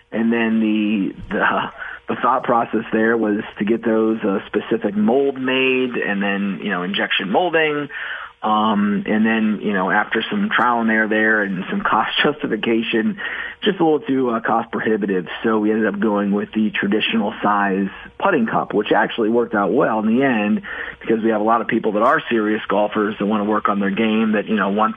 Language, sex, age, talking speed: English, male, 40-59, 205 wpm